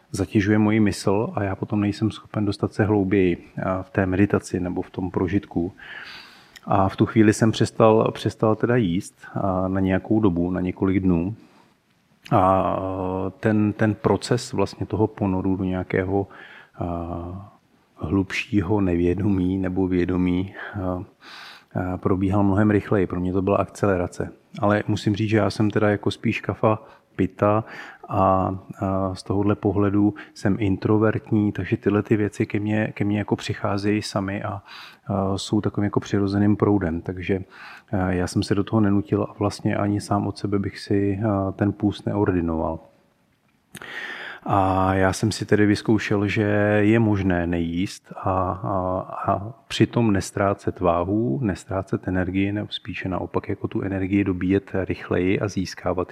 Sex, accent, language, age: male, native, Czech, 30-49